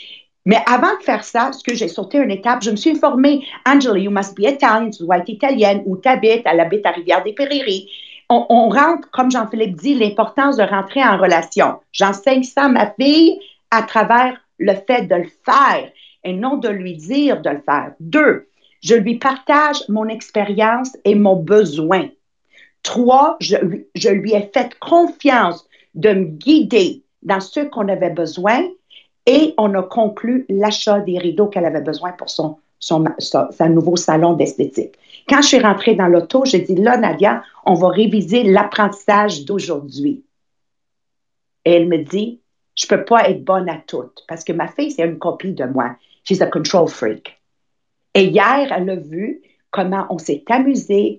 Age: 50-69